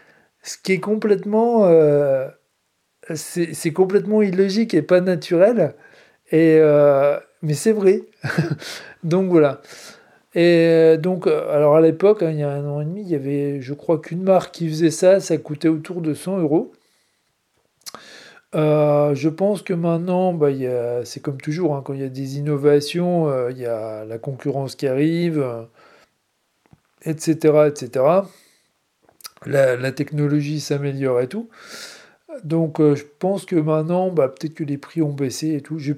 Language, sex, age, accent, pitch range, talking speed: French, male, 40-59, French, 145-185 Hz, 155 wpm